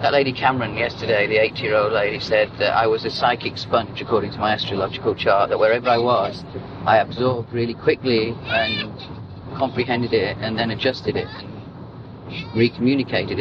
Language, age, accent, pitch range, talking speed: English, 40-59, British, 115-140 Hz, 170 wpm